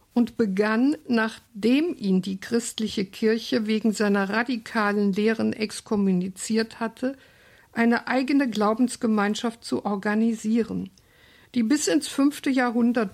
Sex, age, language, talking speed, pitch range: female, 60-79, German, 105 wpm, 210-250 Hz